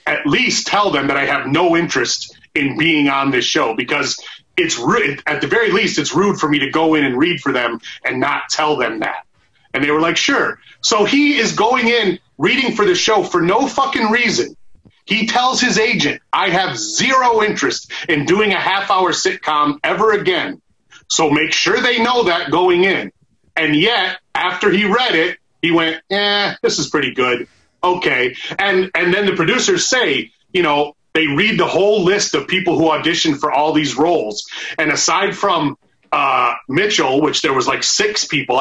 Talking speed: 190 wpm